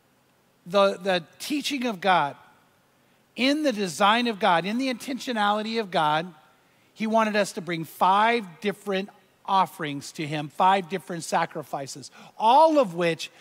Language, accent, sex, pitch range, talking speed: English, American, male, 170-225 Hz, 140 wpm